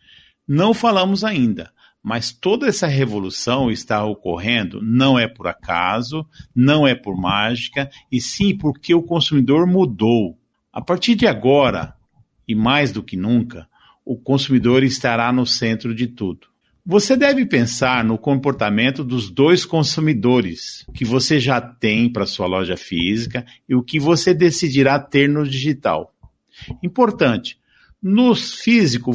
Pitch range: 115-160 Hz